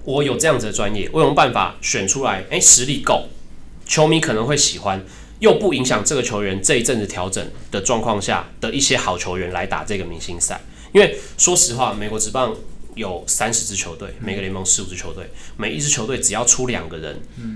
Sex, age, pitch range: male, 20-39, 95-120 Hz